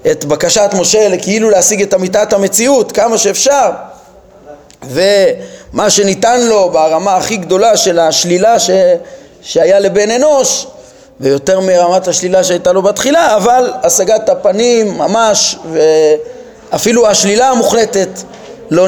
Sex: male